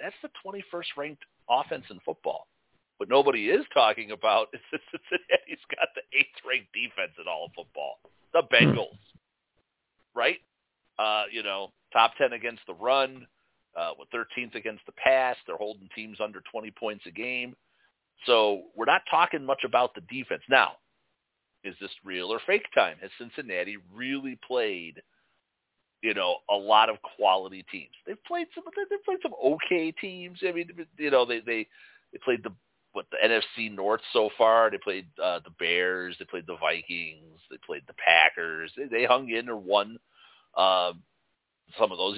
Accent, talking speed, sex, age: American, 170 wpm, male, 50-69